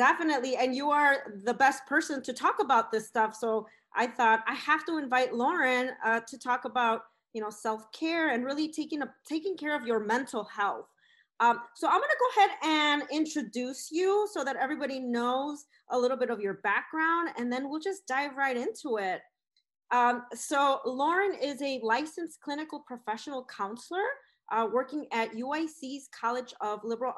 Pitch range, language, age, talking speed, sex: 225-290 Hz, English, 30-49, 175 wpm, female